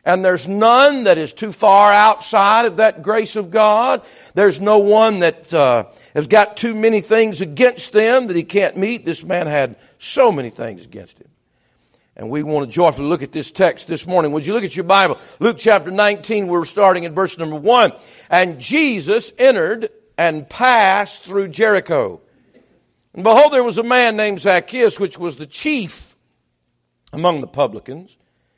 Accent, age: American, 50-69